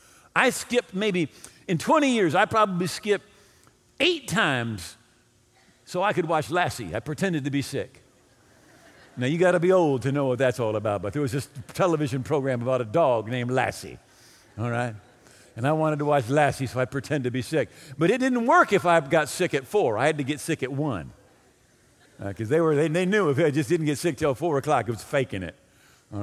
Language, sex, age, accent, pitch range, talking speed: English, male, 50-69, American, 125-190 Hz, 215 wpm